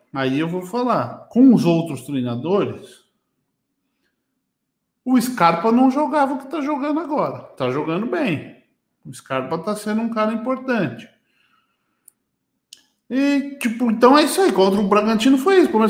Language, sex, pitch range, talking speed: Portuguese, male, 145-230 Hz, 145 wpm